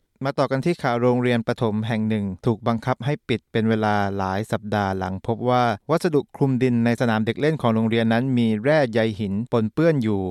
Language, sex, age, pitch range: Thai, male, 20-39, 110-135 Hz